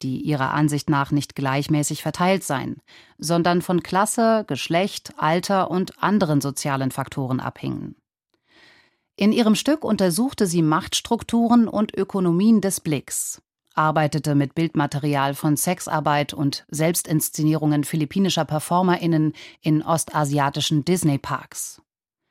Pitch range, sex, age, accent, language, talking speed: 150-185 Hz, female, 30-49, German, German, 110 wpm